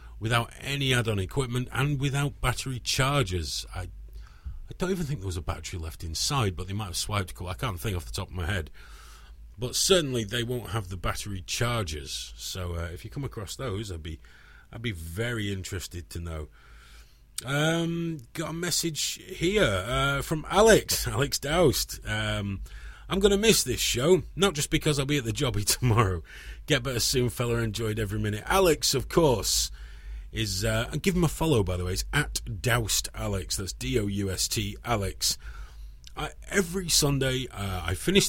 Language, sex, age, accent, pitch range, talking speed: English, male, 30-49, British, 90-135 Hz, 190 wpm